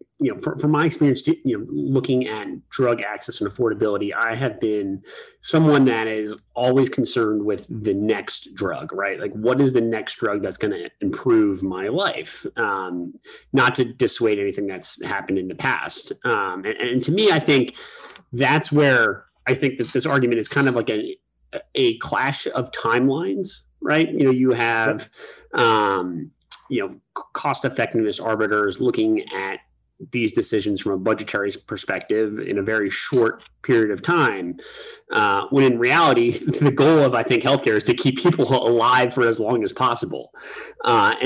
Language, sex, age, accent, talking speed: English, male, 30-49, American, 175 wpm